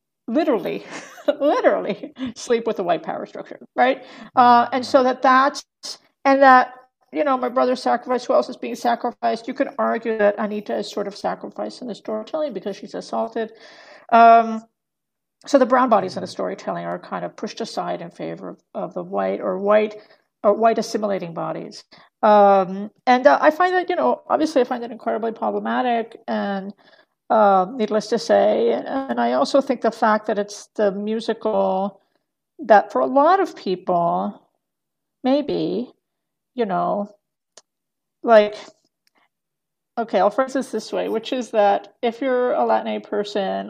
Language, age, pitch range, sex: English, 50-69, 205-255 Hz, female